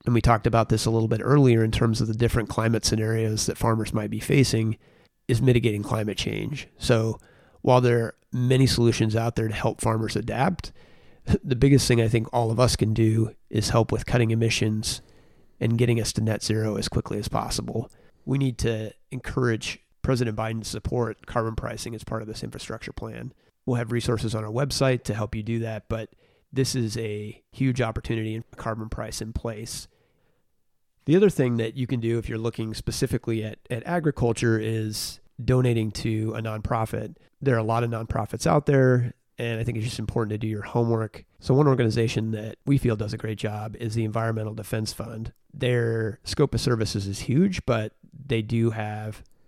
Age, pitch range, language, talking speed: 30-49, 110-120 Hz, English, 195 wpm